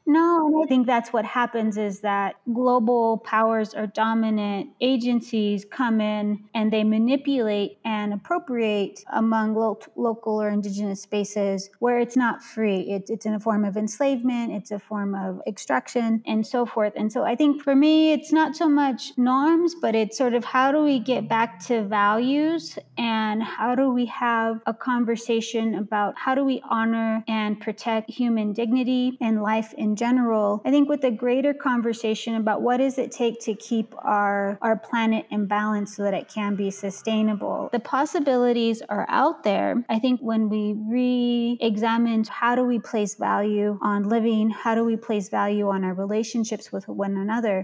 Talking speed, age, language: 175 wpm, 20-39, English